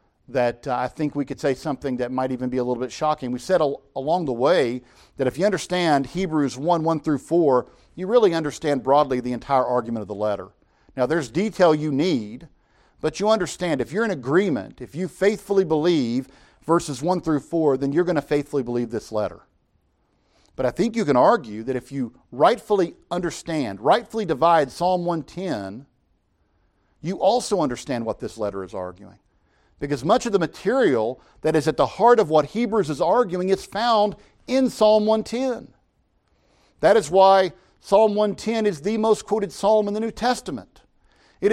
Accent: American